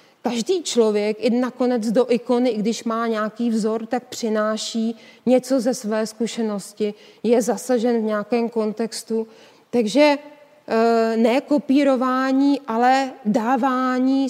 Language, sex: Czech, female